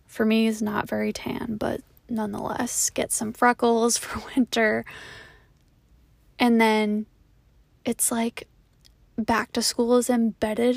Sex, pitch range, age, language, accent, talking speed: female, 210-245 Hz, 10-29, English, American, 125 wpm